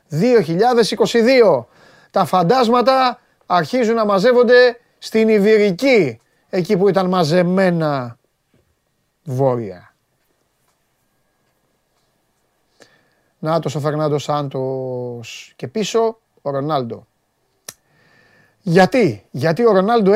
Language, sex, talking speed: Greek, male, 75 wpm